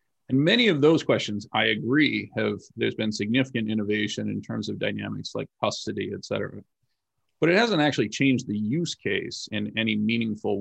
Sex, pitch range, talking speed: male, 105-130 Hz, 175 wpm